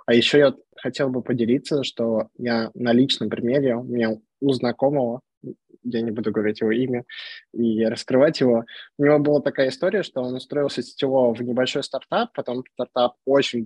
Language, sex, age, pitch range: Russian, male, 20-39, 115-130 Hz